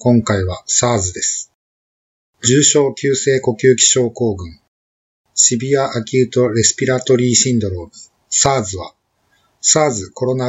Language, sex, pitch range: Japanese, male, 110-135 Hz